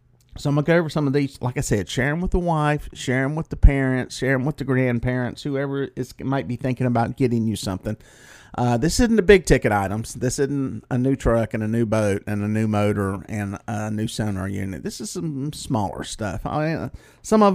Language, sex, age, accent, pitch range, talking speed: English, male, 40-59, American, 105-135 Hz, 235 wpm